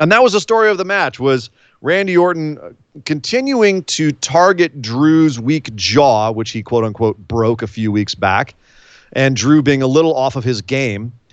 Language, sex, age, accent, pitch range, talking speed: English, male, 30-49, American, 120-155 Hz, 185 wpm